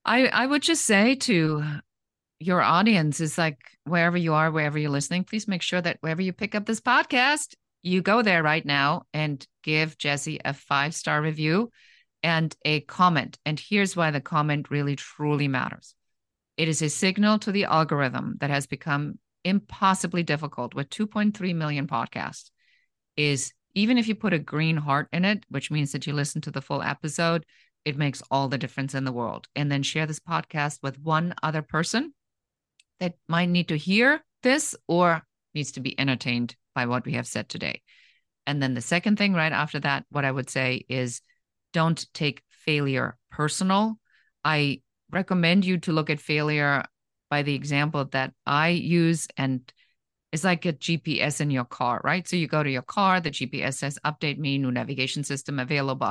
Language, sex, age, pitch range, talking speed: English, female, 50-69, 140-180 Hz, 185 wpm